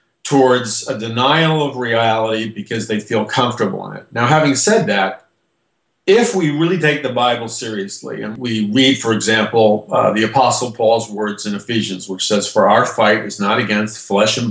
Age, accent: 50-69, American